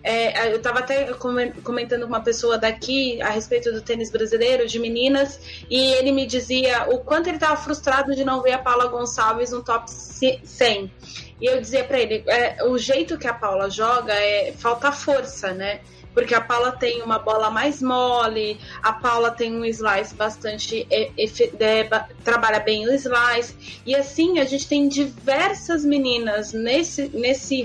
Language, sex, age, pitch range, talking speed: Portuguese, female, 20-39, 225-275 Hz, 170 wpm